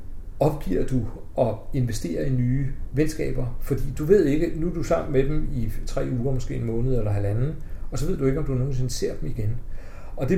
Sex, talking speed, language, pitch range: male, 220 wpm, Danish, 110-135 Hz